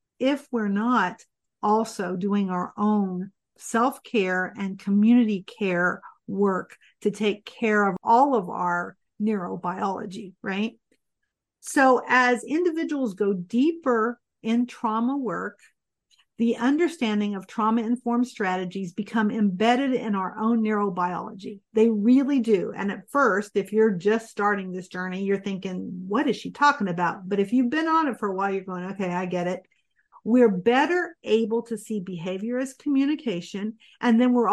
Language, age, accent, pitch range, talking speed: English, 50-69, American, 195-250 Hz, 150 wpm